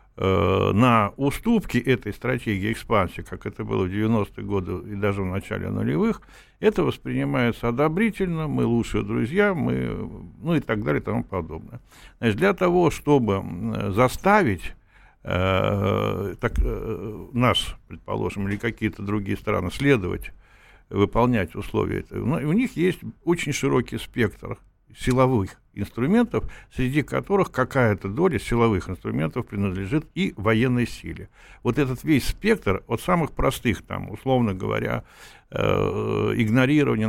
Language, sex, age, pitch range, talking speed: Russian, male, 60-79, 100-130 Hz, 125 wpm